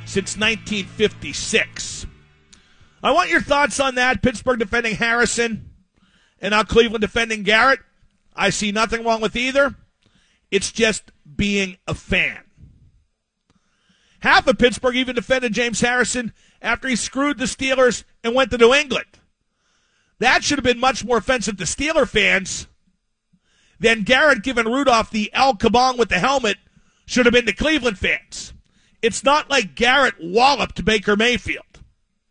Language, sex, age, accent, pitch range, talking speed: English, male, 40-59, American, 210-255 Hz, 145 wpm